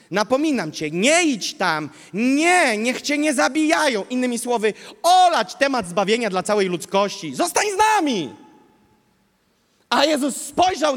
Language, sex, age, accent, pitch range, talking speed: Polish, male, 30-49, native, 225-305 Hz, 130 wpm